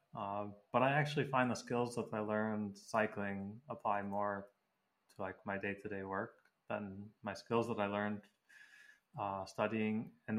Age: 20-39